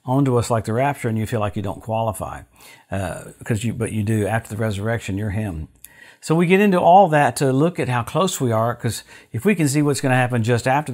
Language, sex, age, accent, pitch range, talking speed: English, male, 50-69, American, 110-130 Hz, 265 wpm